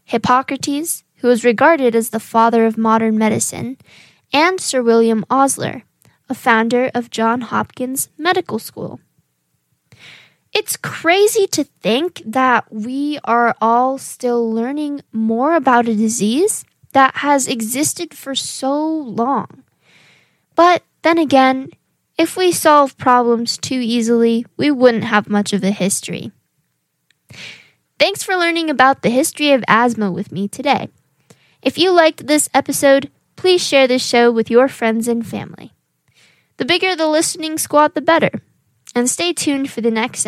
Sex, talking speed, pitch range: female, 140 wpm, 230-310 Hz